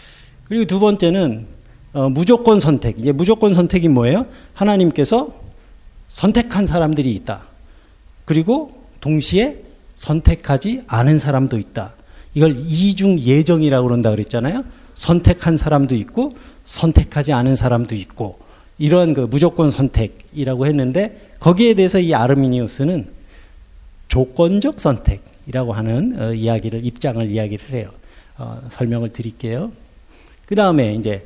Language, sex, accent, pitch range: Korean, male, native, 120-190 Hz